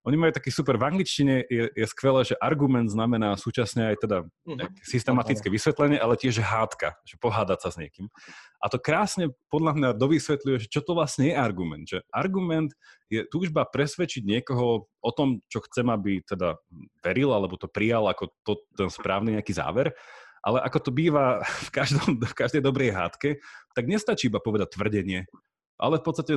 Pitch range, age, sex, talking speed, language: 100-140 Hz, 30-49, male, 175 wpm, Slovak